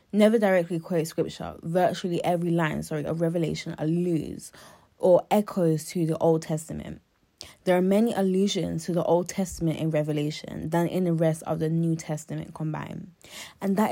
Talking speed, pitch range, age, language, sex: 165 wpm, 165-195 Hz, 10-29, English, female